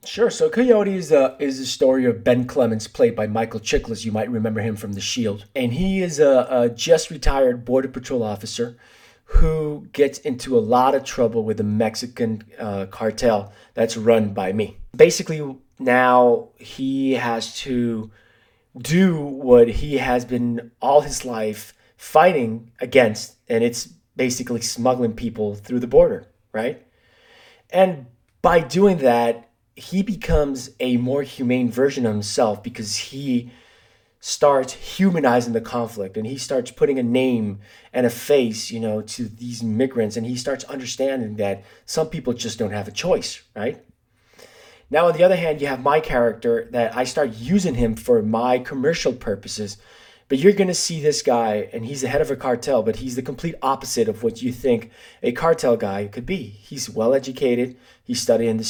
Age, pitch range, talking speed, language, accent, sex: 20-39, 115-140 Hz, 170 wpm, English, American, male